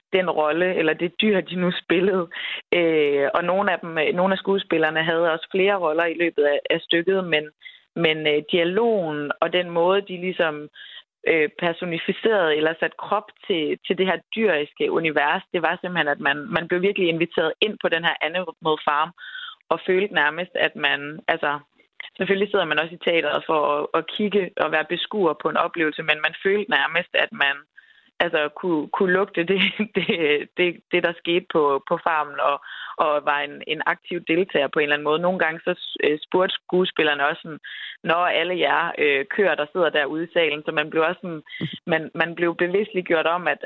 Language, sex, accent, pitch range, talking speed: Danish, female, native, 155-185 Hz, 195 wpm